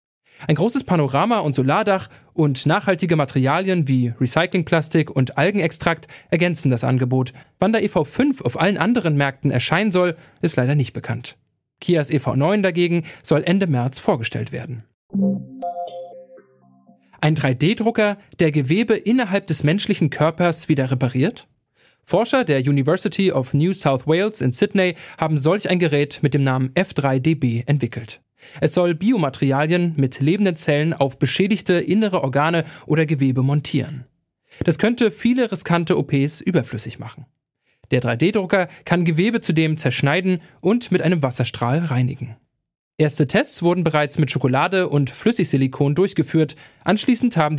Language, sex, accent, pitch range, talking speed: German, male, German, 140-185 Hz, 135 wpm